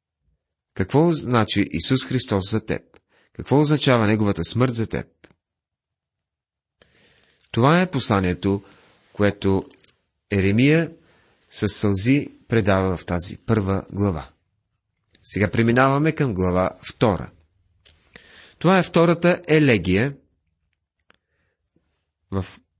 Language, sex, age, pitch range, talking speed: Bulgarian, male, 40-59, 95-135 Hz, 90 wpm